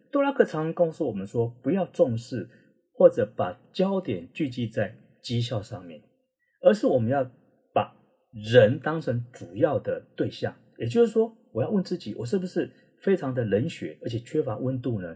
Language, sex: Chinese, male